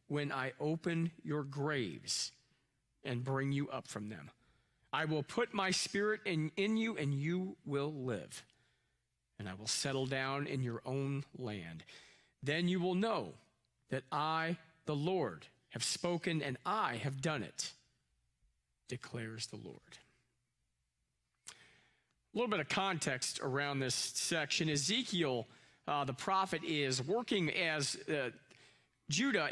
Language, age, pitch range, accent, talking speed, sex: English, 40-59, 125-170 Hz, American, 140 wpm, male